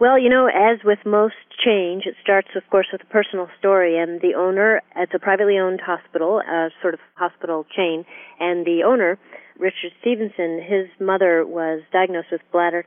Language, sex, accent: English, female, American